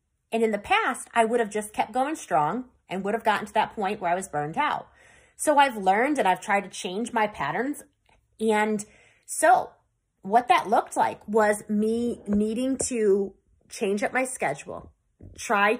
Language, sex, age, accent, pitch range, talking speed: English, female, 30-49, American, 190-250 Hz, 180 wpm